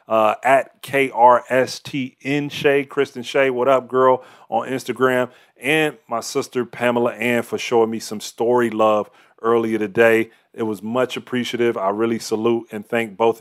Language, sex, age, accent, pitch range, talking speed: English, male, 30-49, American, 115-140 Hz, 150 wpm